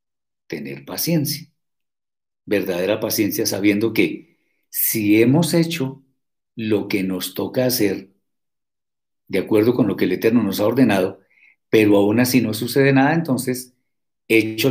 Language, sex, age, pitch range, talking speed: Spanish, male, 50-69, 105-155 Hz, 130 wpm